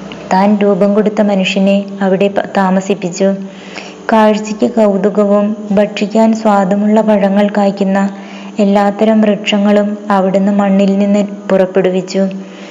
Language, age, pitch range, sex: Malayalam, 20-39, 195-210 Hz, female